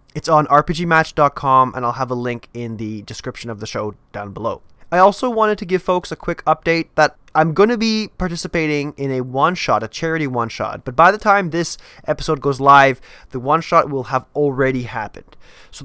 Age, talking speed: 20-39, 195 wpm